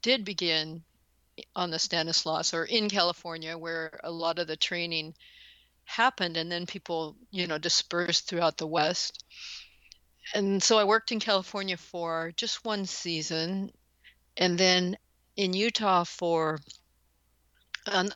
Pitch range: 165-200 Hz